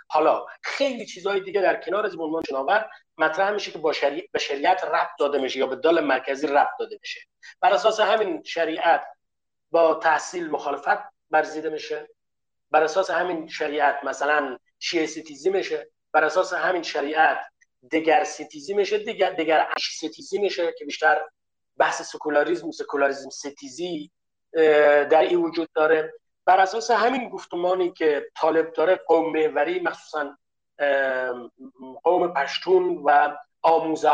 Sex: male